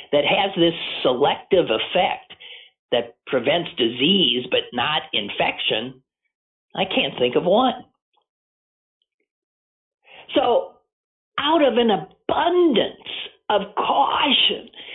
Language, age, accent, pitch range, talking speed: English, 50-69, American, 185-290 Hz, 90 wpm